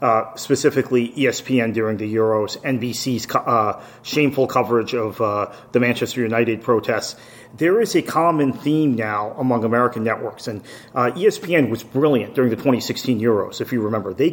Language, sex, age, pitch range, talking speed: English, male, 40-59, 115-135 Hz, 160 wpm